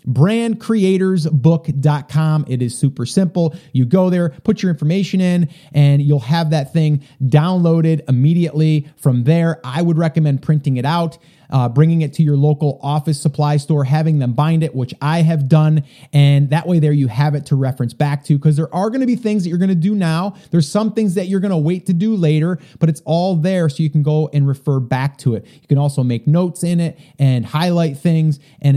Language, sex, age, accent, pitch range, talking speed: English, male, 30-49, American, 140-175 Hz, 215 wpm